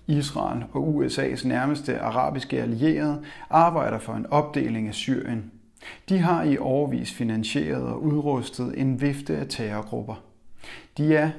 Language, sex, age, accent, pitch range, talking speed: Danish, male, 30-49, native, 120-150 Hz, 130 wpm